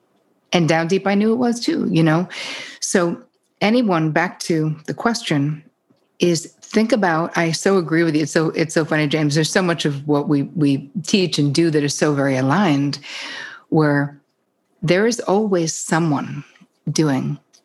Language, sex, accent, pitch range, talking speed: English, female, American, 145-190 Hz, 175 wpm